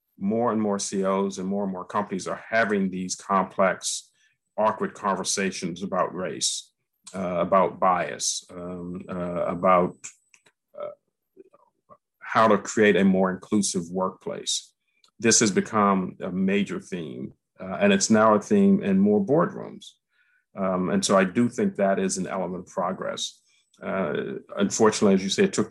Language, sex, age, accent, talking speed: English, male, 50-69, American, 150 wpm